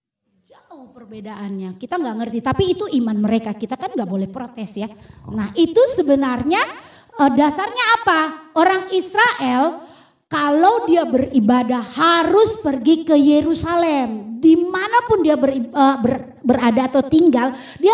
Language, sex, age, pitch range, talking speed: Indonesian, female, 20-39, 240-350 Hz, 115 wpm